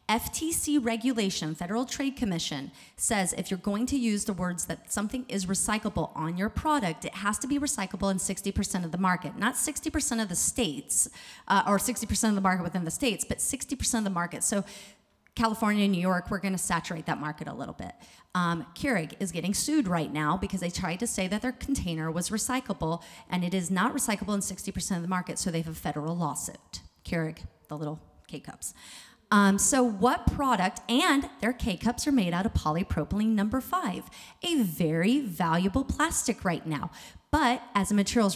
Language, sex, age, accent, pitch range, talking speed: English, female, 30-49, American, 185-250 Hz, 190 wpm